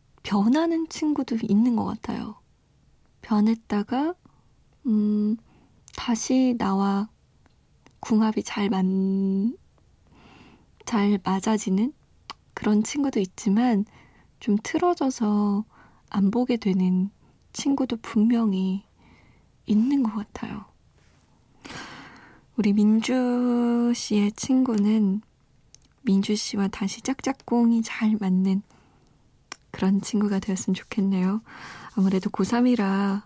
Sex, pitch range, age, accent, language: female, 200-245 Hz, 20-39, native, Korean